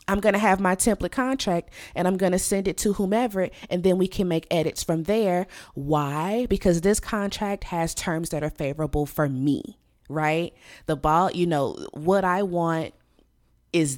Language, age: English, 20-39